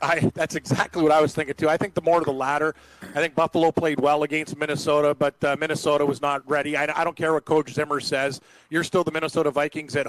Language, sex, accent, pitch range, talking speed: English, male, American, 150-170 Hz, 250 wpm